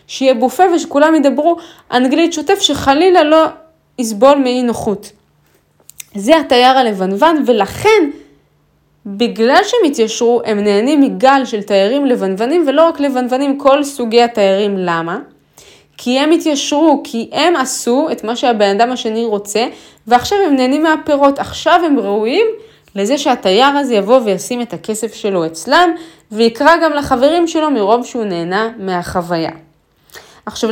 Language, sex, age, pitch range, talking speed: Hebrew, female, 20-39, 205-275 Hz, 130 wpm